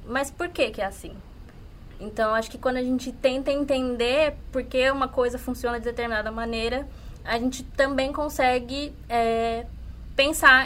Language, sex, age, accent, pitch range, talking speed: Portuguese, female, 20-39, Brazilian, 230-275 Hz, 160 wpm